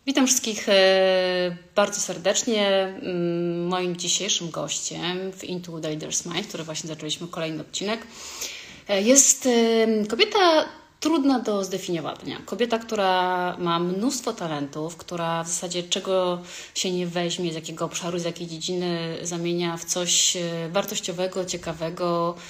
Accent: native